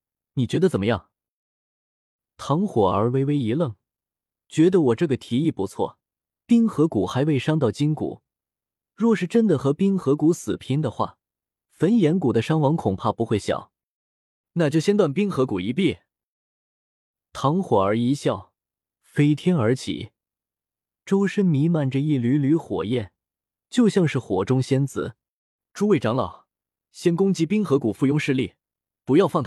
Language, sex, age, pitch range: Chinese, male, 20-39, 110-170 Hz